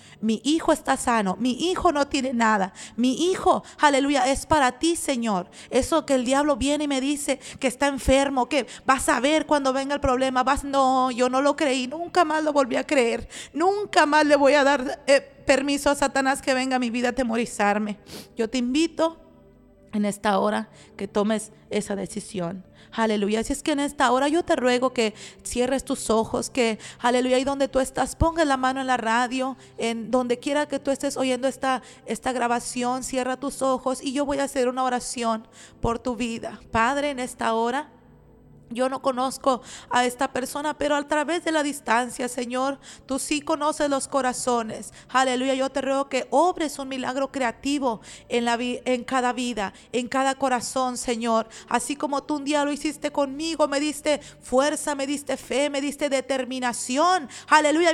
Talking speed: 185 wpm